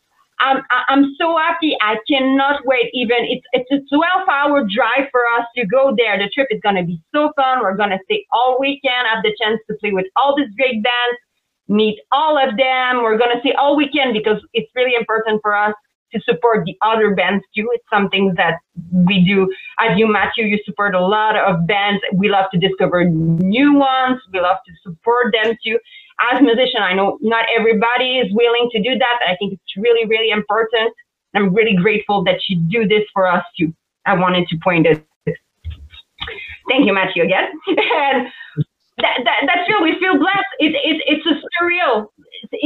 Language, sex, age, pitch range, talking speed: English, female, 30-49, 205-270 Hz, 200 wpm